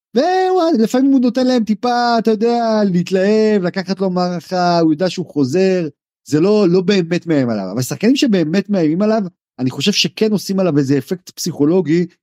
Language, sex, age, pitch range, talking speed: Hebrew, male, 40-59, 145-205 Hz, 165 wpm